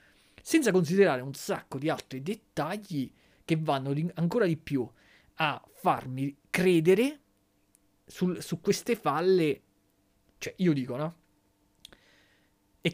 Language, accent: Italian, native